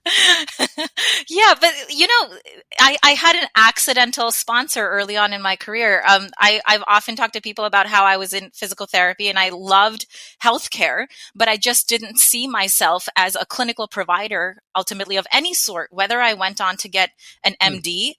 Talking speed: 180 wpm